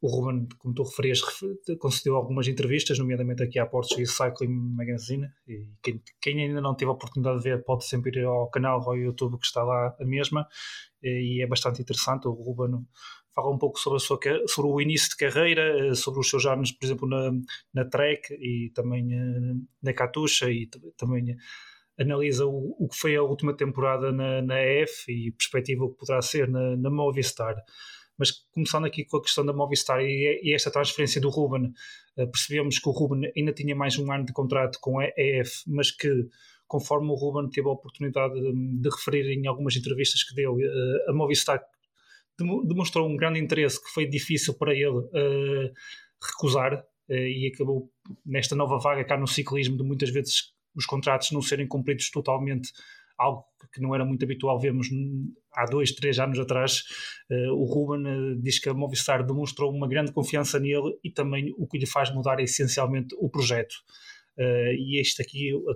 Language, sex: Portuguese, male